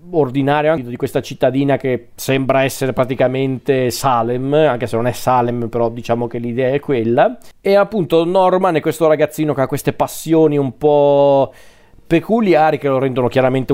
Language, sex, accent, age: Italian, male, native, 40-59